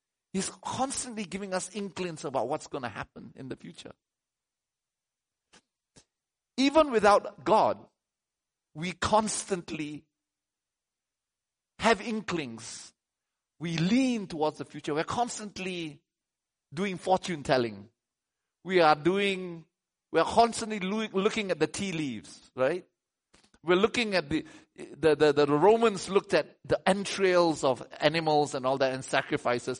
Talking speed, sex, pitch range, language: 125 wpm, male, 135-195 Hz, English